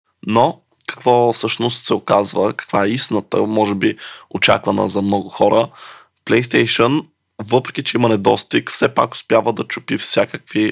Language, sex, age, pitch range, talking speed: Bulgarian, male, 20-39, 105-110 Hz, 140 wpm